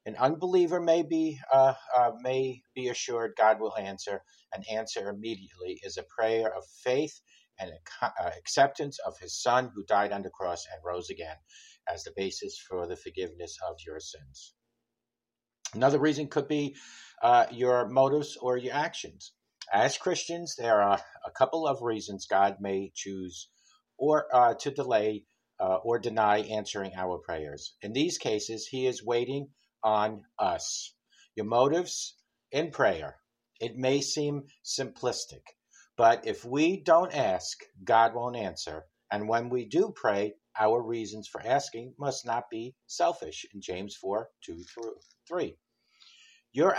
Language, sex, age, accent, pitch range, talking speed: English, male, 50-69, American, 105-150 Hz, 150 wpm